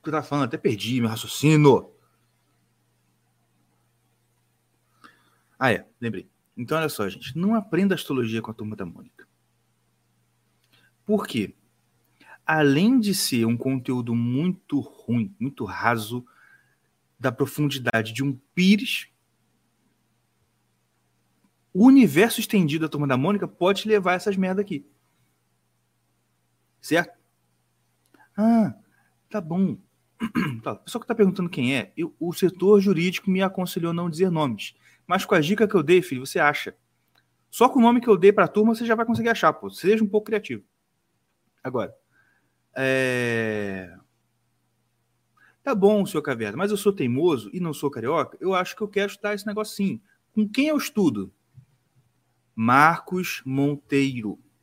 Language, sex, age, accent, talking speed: Portuguese, male, 40-59, Brazilian, 145 wpm